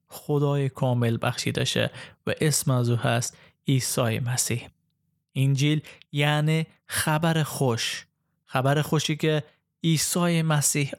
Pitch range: 130-155 Hz